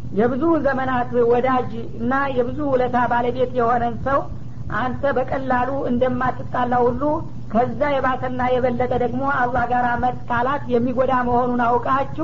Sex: female